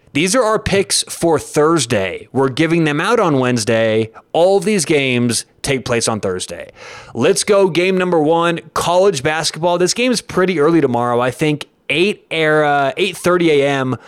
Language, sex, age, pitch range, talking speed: English, male, 20-39, 125-160 Hz, 170 wpm